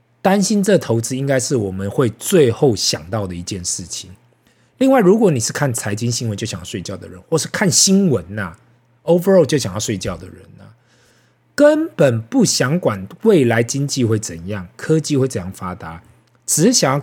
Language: Chinese